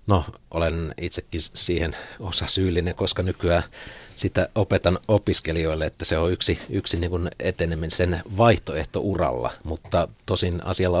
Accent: native